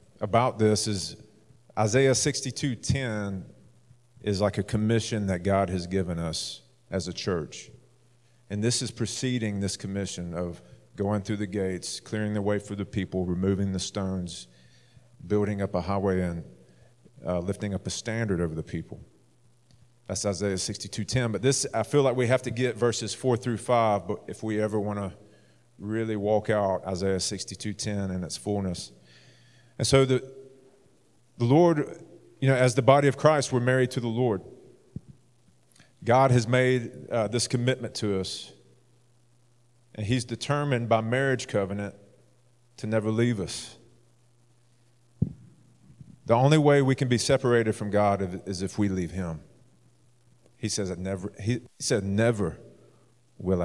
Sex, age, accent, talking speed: male, 40-59, American, 155 wpm